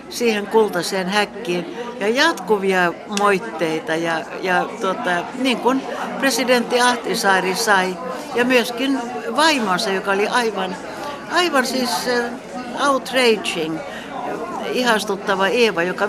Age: 60-79